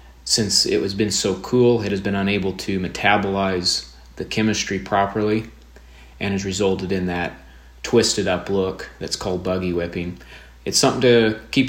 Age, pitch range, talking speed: 30-49, 90-105 Hz, 160 wpm